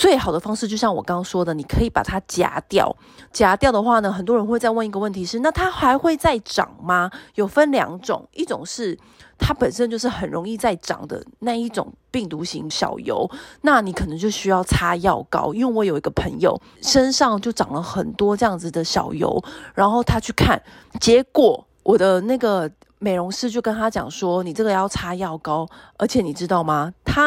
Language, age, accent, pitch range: Chinese, 30-49, native, 180-245 Hz